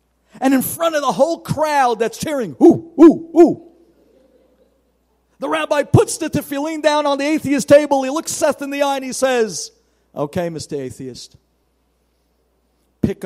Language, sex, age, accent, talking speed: English, male, 50-69, American, 160 wpm